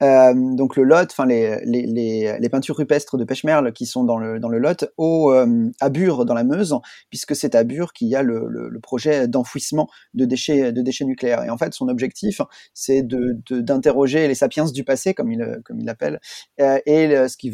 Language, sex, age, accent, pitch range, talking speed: French, male, 30-49, French, 125-155 Hz, 230 wpm